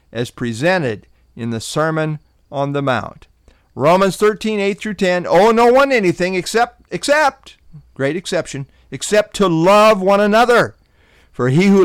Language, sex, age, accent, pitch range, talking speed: English, male, 50-69, American, 120-180 Hz, 140 wpm